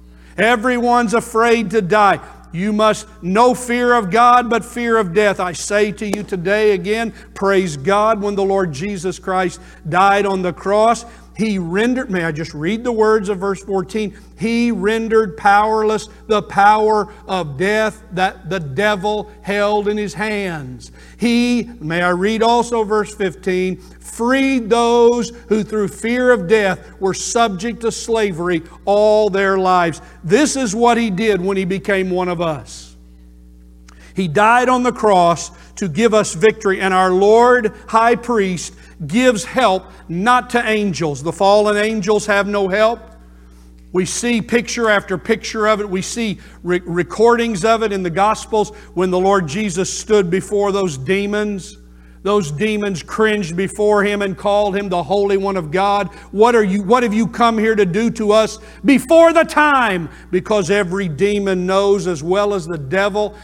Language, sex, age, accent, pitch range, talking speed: English, male, 50-69, American, 185-220 Hz, 160 wpm